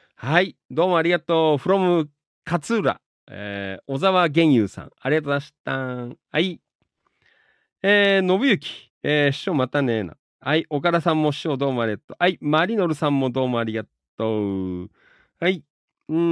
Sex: male